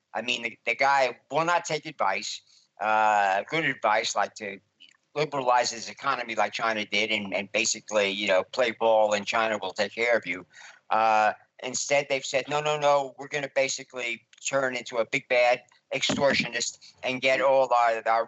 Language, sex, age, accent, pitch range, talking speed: English, male, 50-69, American, 110-135 Hz, 185 wpm